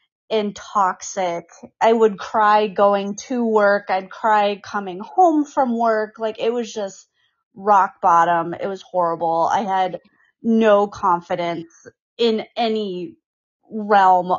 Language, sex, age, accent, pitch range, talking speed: English, female, 20-39, American, 190-230 Hz, 125 wpm